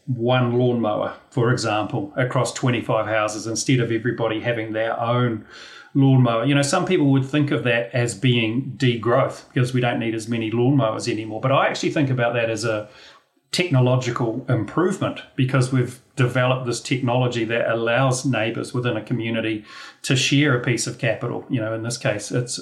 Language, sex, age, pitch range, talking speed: English, male, 40-59, 115-130 Hz, 175 wpm